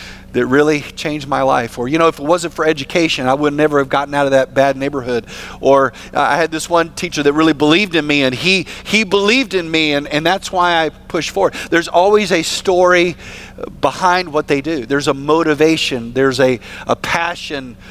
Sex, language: male, English